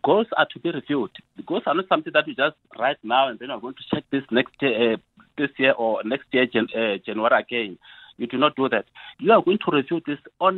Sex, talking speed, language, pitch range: male, 260 wpm, English, 130-195 Hz